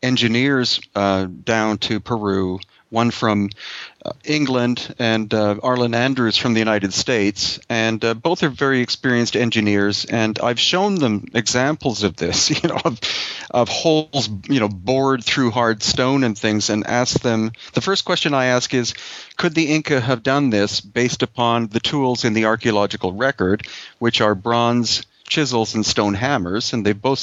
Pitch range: 110-135 Hz